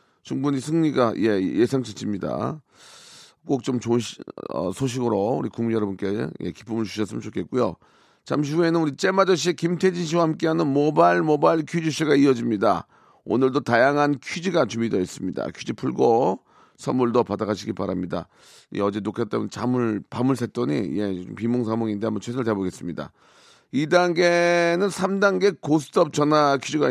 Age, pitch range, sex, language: 40-59, 115-170 Hz, male, Korean